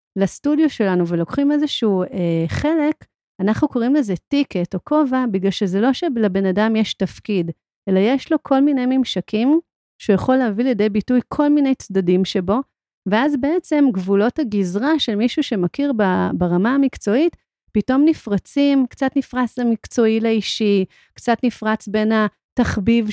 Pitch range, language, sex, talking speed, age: 195-265 Hz, Hebrew, female, 135 wpm, 40-59